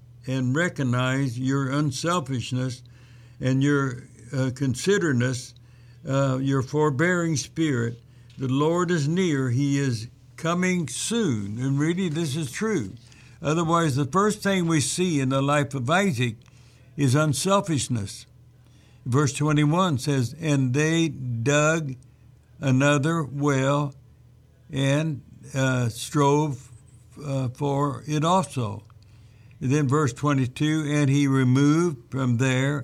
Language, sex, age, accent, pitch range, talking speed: English, male, 60-79, American, 125-150 Hz, 110 wpm